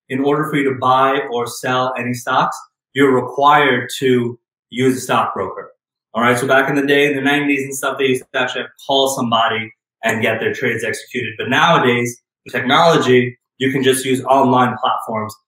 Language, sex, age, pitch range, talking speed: English, male, 20-39, 125-145 Hz, 195 wpm